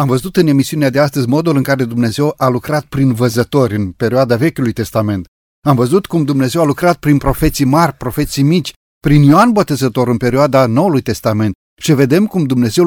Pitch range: 125-160 Hz